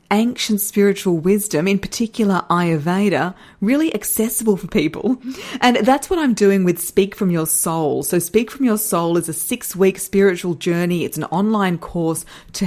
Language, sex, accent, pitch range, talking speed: English, female, Australian, 175-220 Hz, 170 wpm